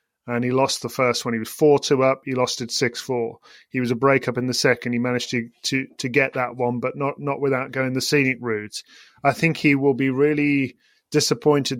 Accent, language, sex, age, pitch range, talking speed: British, English, male, 30-49, 125-140 Hz, 220 wpm